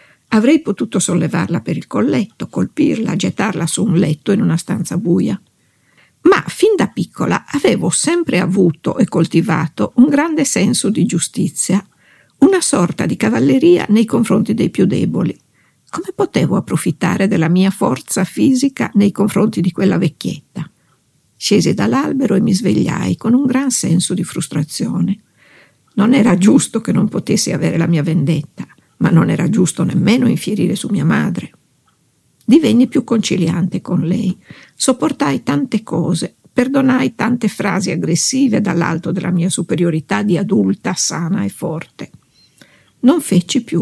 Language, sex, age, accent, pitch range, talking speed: Italian, female, 50-69, native, 175-240 Hz, 140 wpm